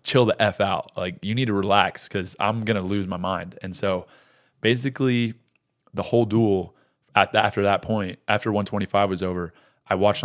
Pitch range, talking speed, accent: 95-115 Hz, 180 wpm, American